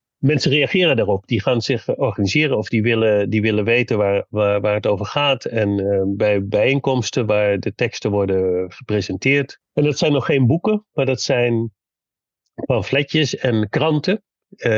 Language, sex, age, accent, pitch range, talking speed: Dutch, male, 40-59, Dutch, 105-135 Hz, 160 wpm